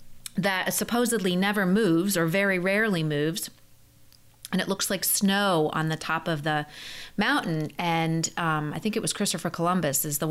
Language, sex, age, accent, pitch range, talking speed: English, female, 30-49, American, 170-215 Hz, 170 wpm